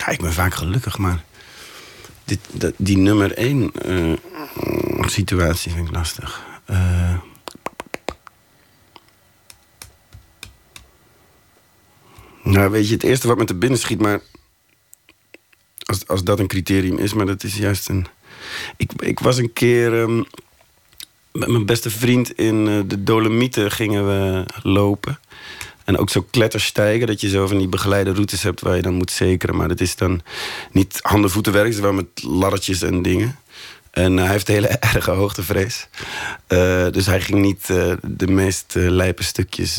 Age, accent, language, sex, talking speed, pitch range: 40-59, Dutch, Dutch, male, 150 wpm, 90-110 Hz